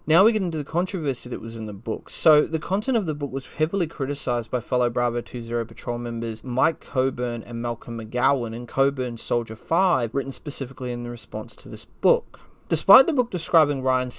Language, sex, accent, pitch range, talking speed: English, male, Australian, 120-145 Hz, 205 wpm